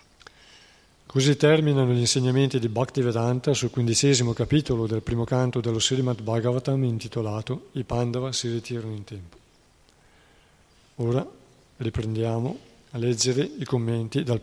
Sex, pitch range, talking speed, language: male, 115-130 Hz, 120 wpm, Italian